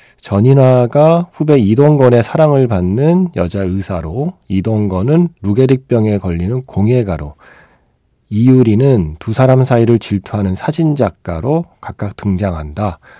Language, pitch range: Korean, 95-135 Hz